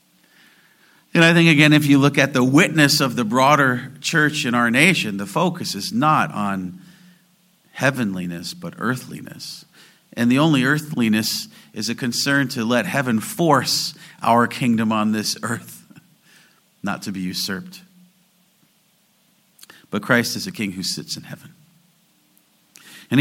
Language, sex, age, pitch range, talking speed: English, male, 50-69, 130-185 Hz, 140 wpm